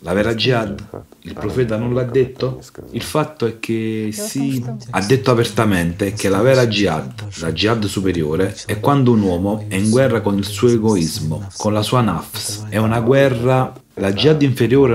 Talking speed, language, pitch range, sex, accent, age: 175 wpm, Italian, 95-120 Hz, male, native, 40-59